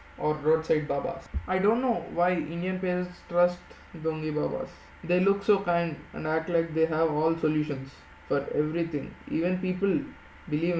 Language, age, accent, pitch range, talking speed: English, 20-39, Indian, 155-185 Hz, 155 wpm